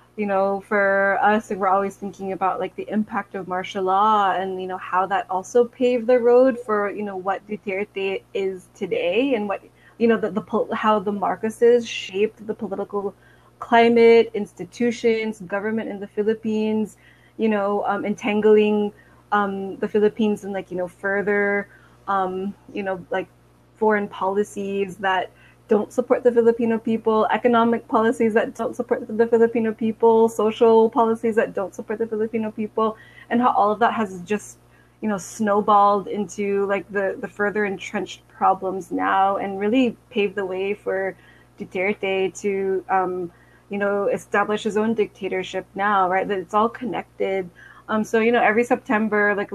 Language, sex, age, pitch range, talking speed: English, female, 20-39, 195-225 Hz, 160 wpm